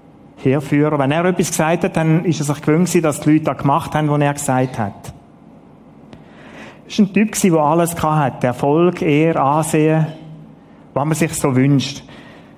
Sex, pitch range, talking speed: male, 135-165 Hz, 170 wpm